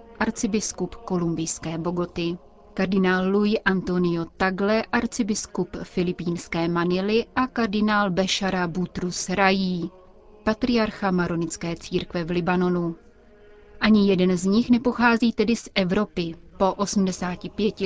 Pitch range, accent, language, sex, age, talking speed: 180-210 Hz, native, Czech, female, 30-49, 100 wpm